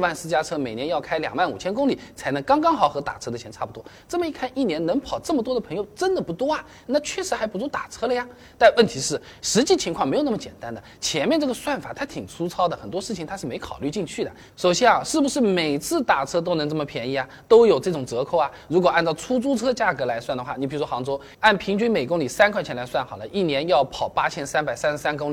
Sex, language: male, Chinese